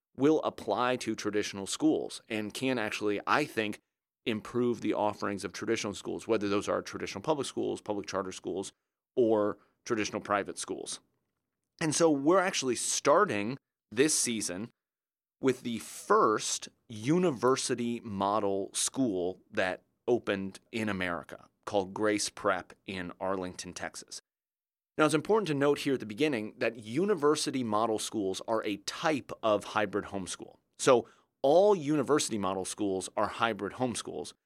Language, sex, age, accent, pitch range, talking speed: English, male, 30-49, American, 100-130 Hz, 140 wpm